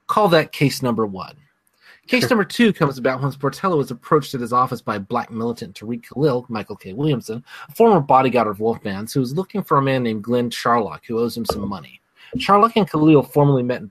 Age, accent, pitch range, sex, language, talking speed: 30-49, American, 120-160 Hz, male, English, 215 wpm